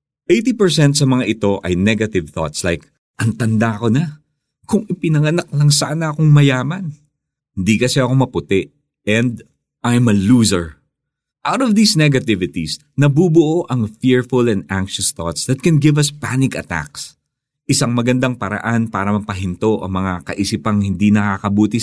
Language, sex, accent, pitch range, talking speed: Filipino, male, native, 90-135 Hz, 145 wpm